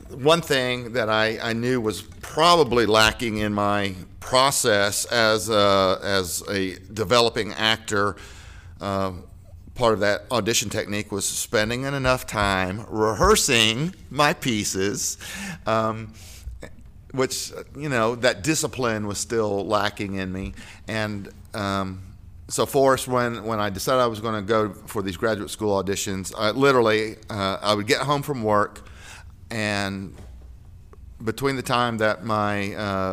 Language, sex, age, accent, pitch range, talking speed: English, male, 50-69, American, 95-115 Hz, 135 wpm